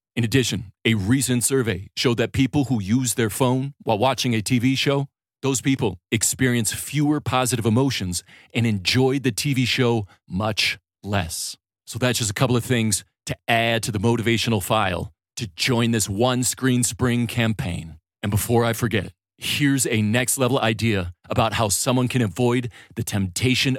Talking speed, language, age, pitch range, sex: 165 wpm, English, 40-59, 105-130 Hz, male